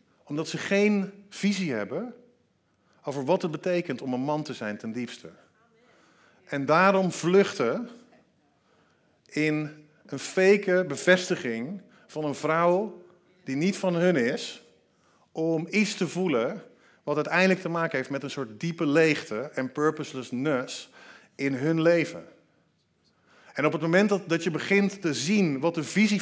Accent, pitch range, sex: Dutch, 155-195 Hz, male